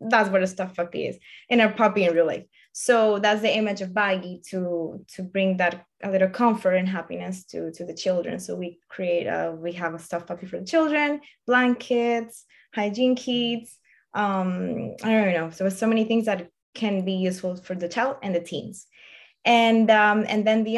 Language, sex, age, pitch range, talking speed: English, female, 20-39, 185-225 Hz, 200 wpm